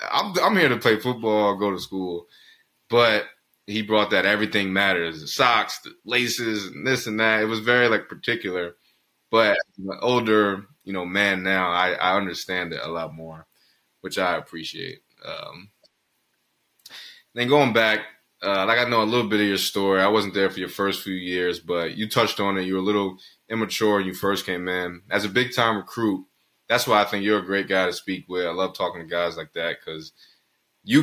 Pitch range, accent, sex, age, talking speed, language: 90-110 Hz, American, male, 20-39, 205 wpm, English